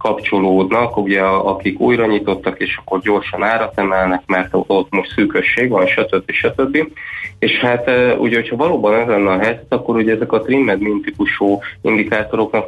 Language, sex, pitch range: Hungarian, male, 95-110 Hz